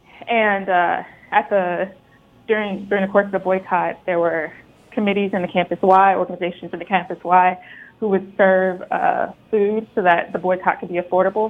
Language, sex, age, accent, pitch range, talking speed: English, female, 20-39, American, 175-205 Hz, 185 wpm